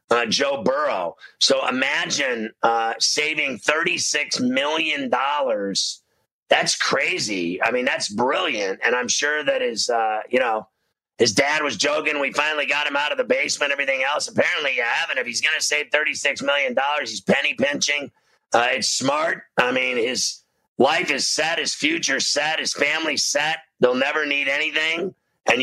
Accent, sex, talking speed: American, male, 165 wpm